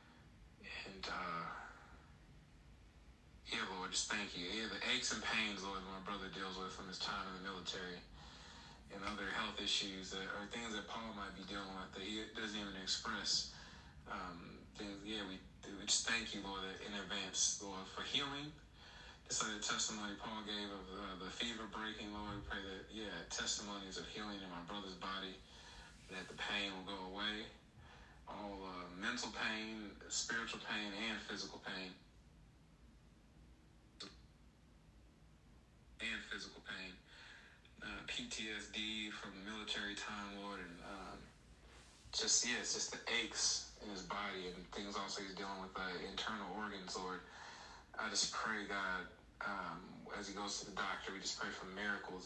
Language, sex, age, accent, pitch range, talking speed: English, male, 20-39, American, 95-105 Hz, 160 wpm